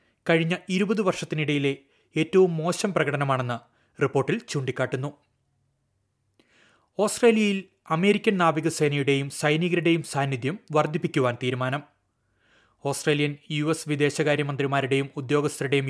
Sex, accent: male, native